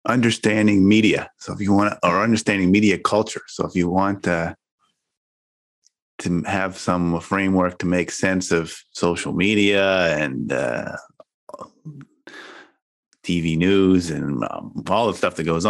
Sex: male